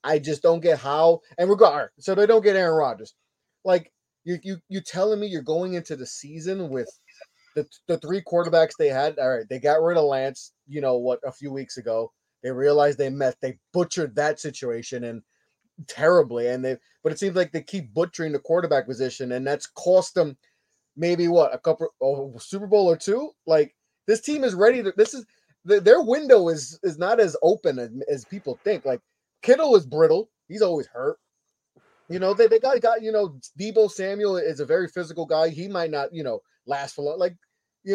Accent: American